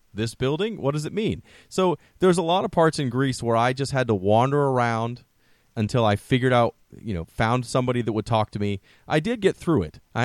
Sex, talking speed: male, 235 wpm